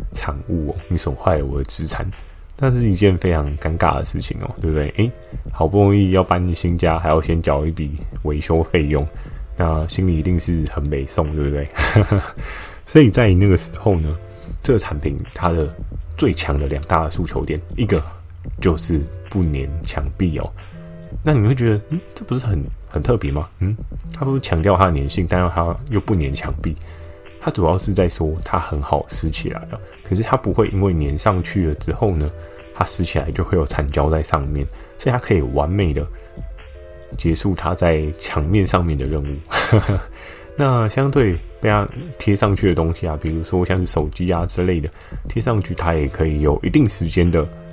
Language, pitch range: Chinese, 80-95 Hz